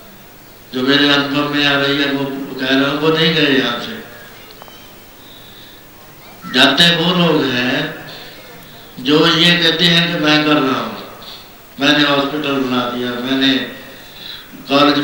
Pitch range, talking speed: 135-155 Hz, 135 wpm